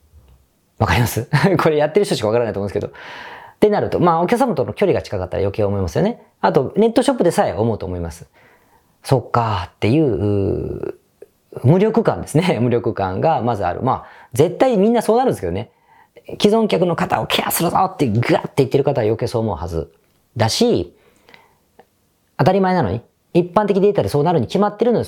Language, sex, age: Japanese, female, 40-59